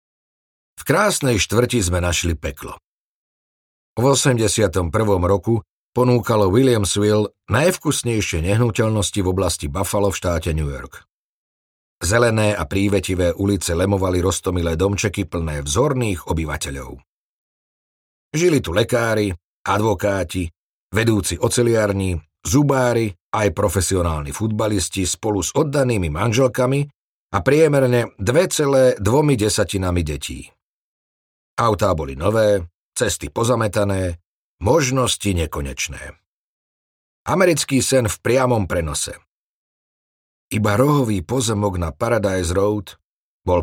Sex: male